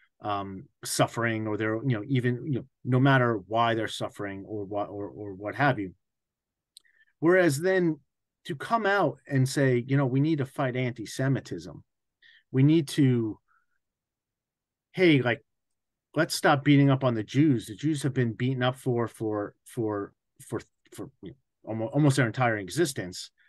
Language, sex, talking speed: English, male, 170 wpm